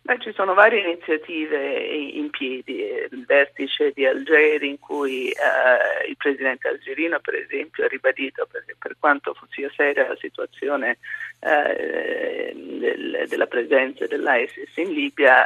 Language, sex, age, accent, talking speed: Italian, male, 30-49, native, 130 wpm